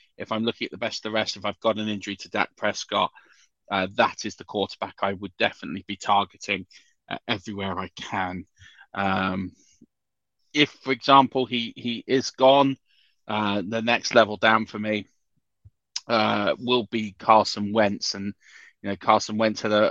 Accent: British